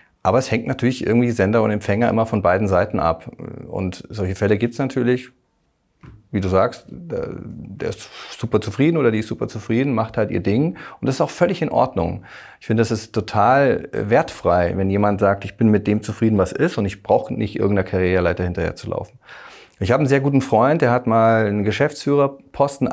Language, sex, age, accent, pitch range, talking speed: German, male, 40-59, German, 95-125 Hz, 205 wpm